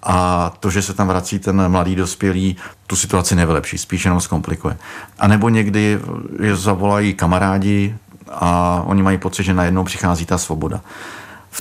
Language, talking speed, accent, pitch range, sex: Czech, 160 wpm, native, 85-95 Hz, male